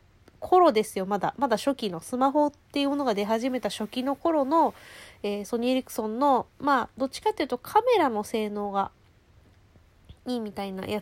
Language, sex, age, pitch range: Japanese, female, 20-39, 170-275 Hz